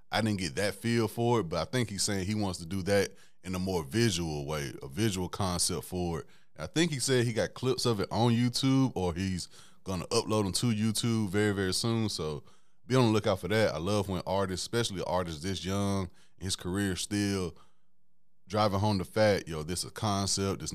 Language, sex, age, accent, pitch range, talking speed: English, male, 20-39, American, 90-110 Hz, 220 wpm